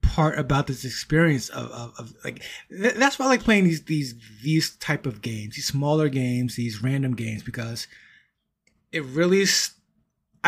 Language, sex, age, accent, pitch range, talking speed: English, male, 20-39, American, 125-165 Hz, 170 wpm